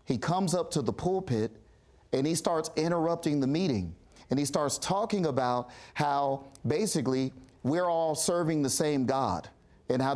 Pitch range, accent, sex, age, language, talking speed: 115-160 Hz, American, male, 40-59, English, 160 wpm